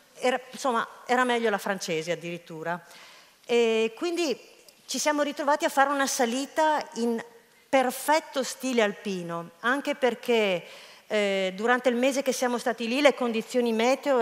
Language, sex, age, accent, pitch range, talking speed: Italian, female, 40-59, native, 200-260 Hz, 140 wpm